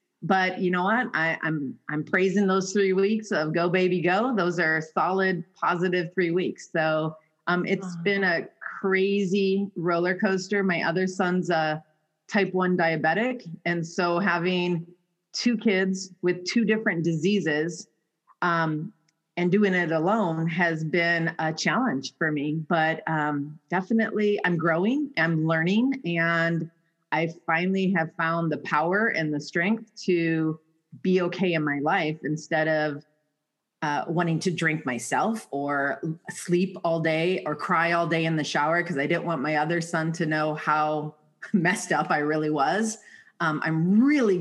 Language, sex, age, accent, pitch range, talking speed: English, female, 30-49, American, 160-185 Hz, 155 wpm